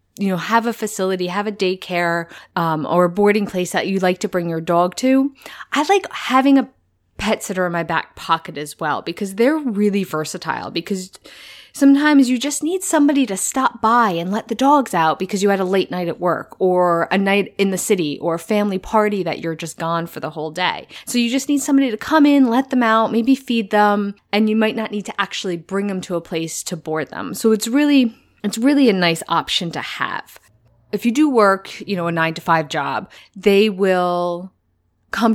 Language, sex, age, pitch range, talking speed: English, female, 20-39, 175-240 Hz, 215 wpm